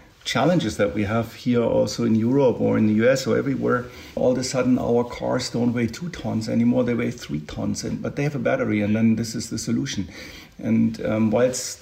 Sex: male